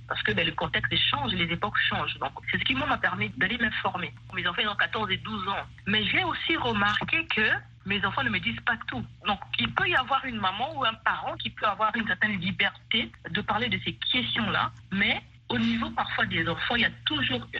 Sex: female